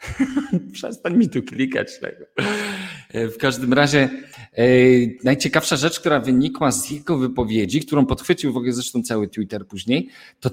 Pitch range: 120-165 Hz